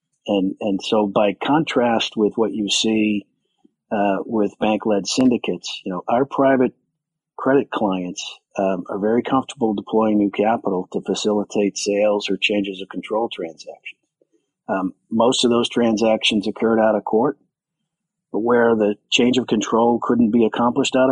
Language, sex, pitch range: English, male, 100-115 Hz